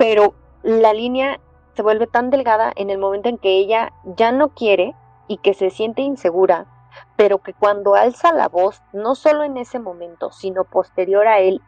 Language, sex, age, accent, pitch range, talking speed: Spanish, female, 20-39, Mexican, 185-230 Hz, 185 wpm